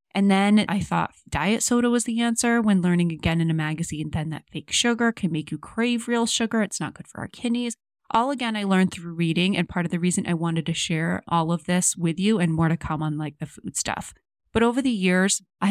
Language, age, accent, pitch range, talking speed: English, 20-39, American, 165-205 Hz, 250 wpm